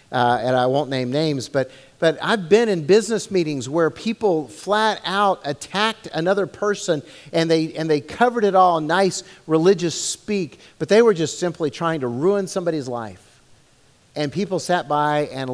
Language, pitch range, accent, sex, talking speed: English, 140-205 Hz, American, male, 180 wpm